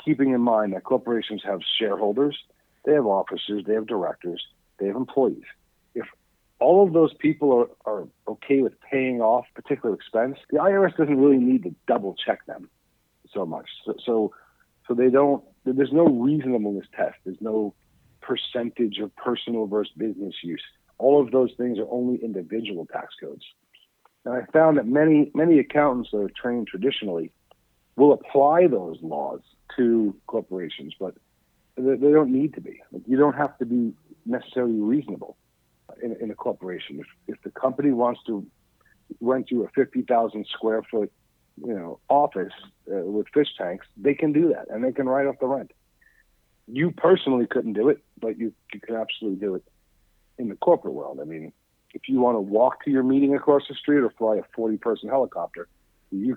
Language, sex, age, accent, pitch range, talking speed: English, male, 60-79, American, 110-140 Hz, 175 wpm